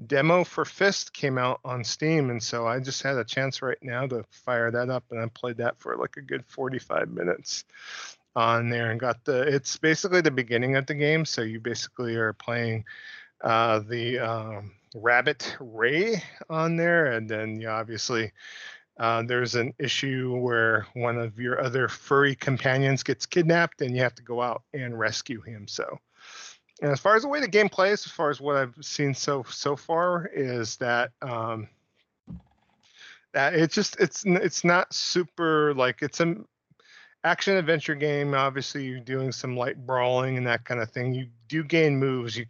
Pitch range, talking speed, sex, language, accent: 120-145 Hz, 180 wpm, male, English, American